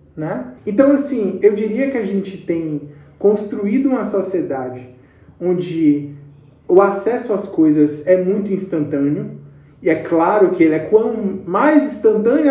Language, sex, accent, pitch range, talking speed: Portuguese, male, Brazilian, 150-235 Hz, 140 wpm